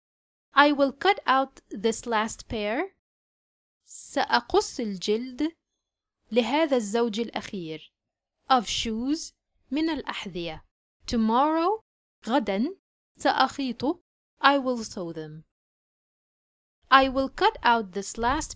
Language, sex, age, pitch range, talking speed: Arabic, female, 30-49, 205-285 Hz, 95 wpm